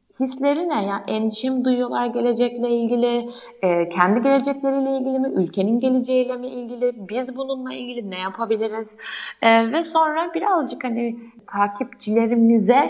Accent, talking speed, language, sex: native, 125 wpm, Turkish, female